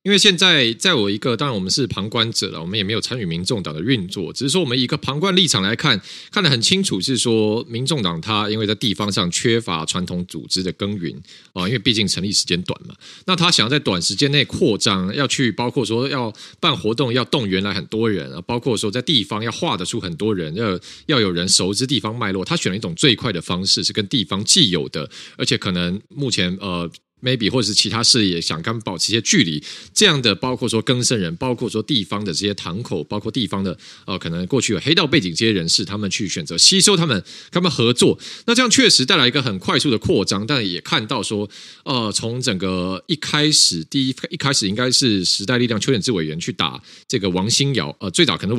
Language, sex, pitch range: Chinese, male, 95-135 Hz